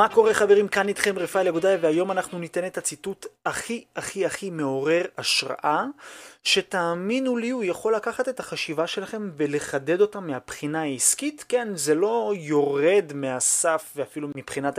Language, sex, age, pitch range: Hebrew, male, 30-49, 140-195 Hz